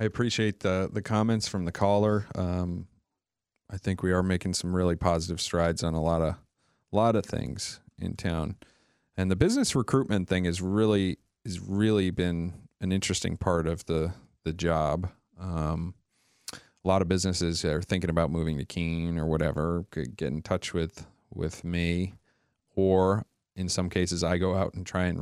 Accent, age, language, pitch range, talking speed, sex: American, 40-59, English, 85-100 Hz, 175 wpm, male